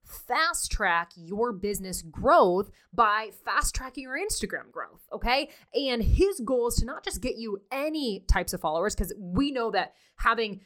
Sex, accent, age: female, American, 20-39